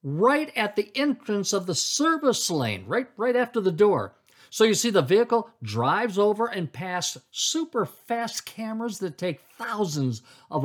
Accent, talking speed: American, 165 wpm